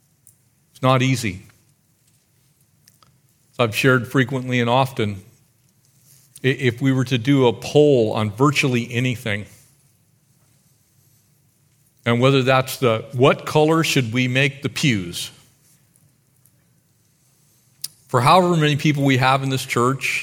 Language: English